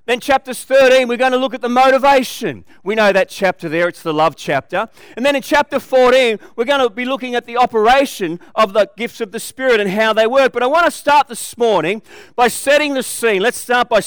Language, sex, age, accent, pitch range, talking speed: English, male, 40-59, Australian, 220-275 Hz, 240 wpm